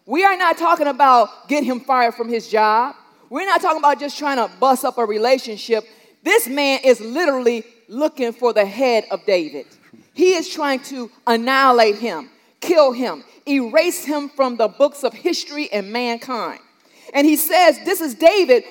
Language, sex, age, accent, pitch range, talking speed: English, female, 40-59, American, 250-320 Hz, 175 wpm